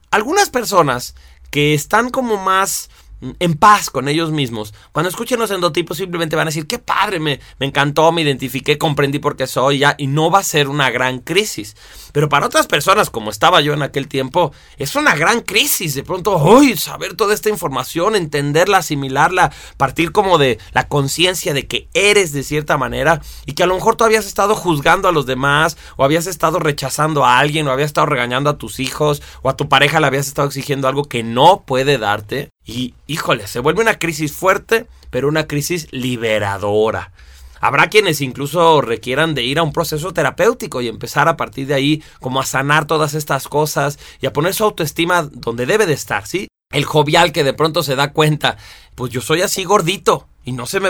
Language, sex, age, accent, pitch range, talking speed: Spanish, male, 30-49, Mexican, 135-175 Hz, 200 wpm